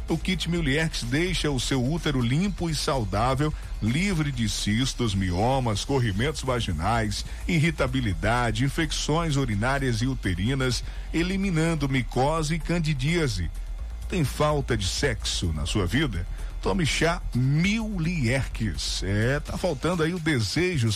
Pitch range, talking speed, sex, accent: 110-160 Hz, 115 wpm, male, Brazilian